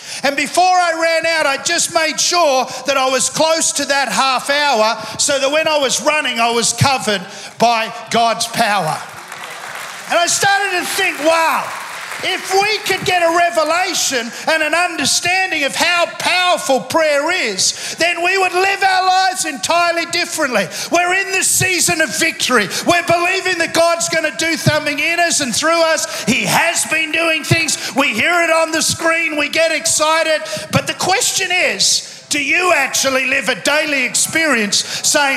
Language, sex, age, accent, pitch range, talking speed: English, male, 40-59, Australian, 240-330 Hz, 170 wpm